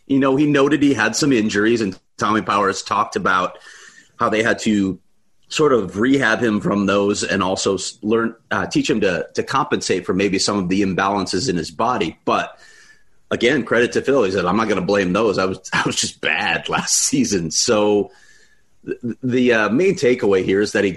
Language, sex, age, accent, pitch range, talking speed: English, male, 30-49, American, 100-125 Hz, 205 wpm